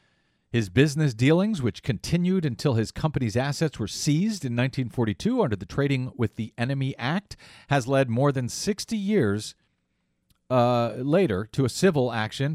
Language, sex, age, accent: English, male, 40-59, American